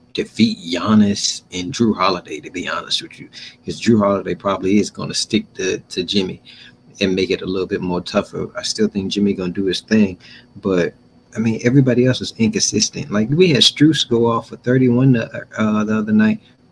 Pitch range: 110-140 Hz